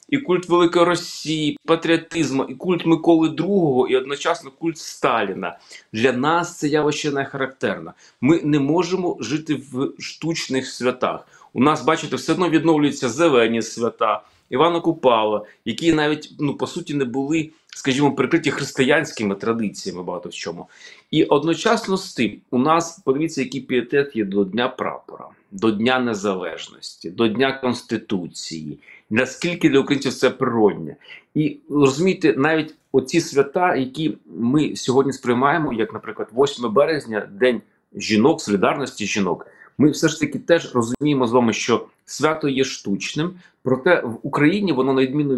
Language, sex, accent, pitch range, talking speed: Ukrainian, male, native, 125-165 Hz, 145 wpm